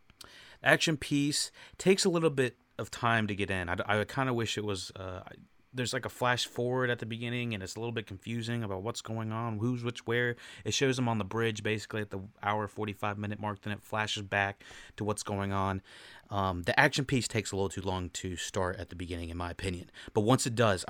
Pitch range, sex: 95-115 Hz, male